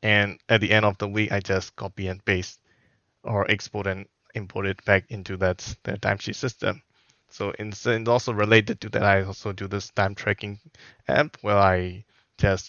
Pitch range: 95-110 Hz